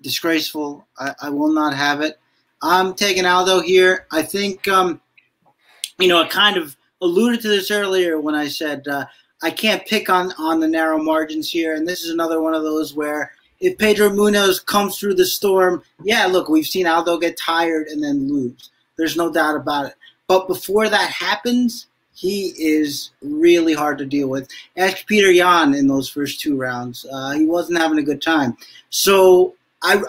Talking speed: 185 wpm